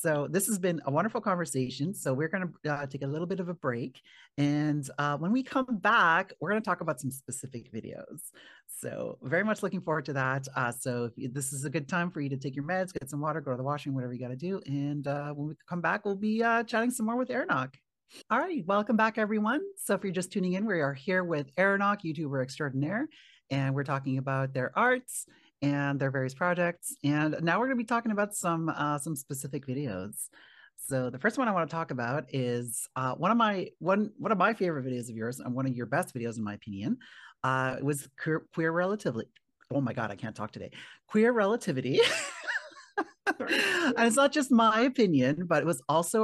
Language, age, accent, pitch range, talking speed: English, 40-59, American, 135-205 Hz, 225 wpm